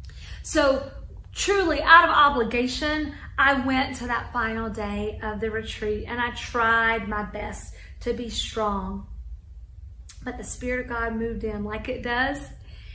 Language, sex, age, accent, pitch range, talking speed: English, female, 40-59, American, 200-245 Hz, 150 wpm